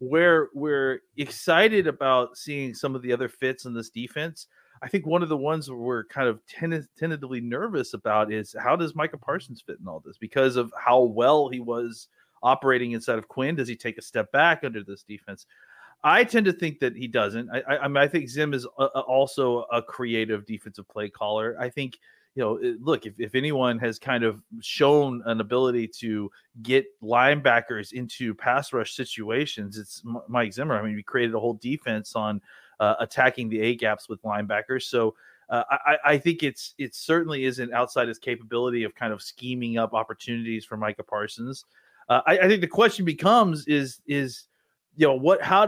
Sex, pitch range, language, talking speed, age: male, 115-150 Hz, English, 190 wpm, 30-49